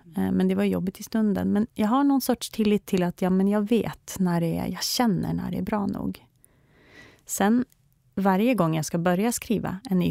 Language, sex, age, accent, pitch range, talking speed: Swedish, female, 30-49, native, 155-205 Hz, 210 wpm